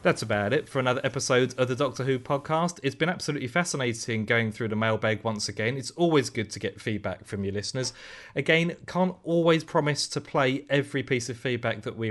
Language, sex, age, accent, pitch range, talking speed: English, male, 30-49, British, 110-135 Hz, 210 wpm